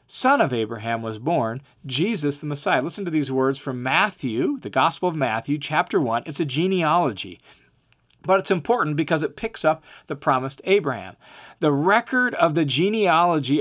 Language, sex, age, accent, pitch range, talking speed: English, male, 40-59, American, 140-185 Hz, 170 wpm